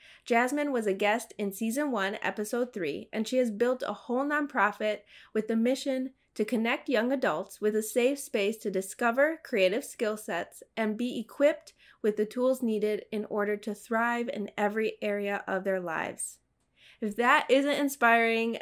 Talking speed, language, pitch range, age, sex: 170 wpm, English, 205-250 Hz, 20-39, female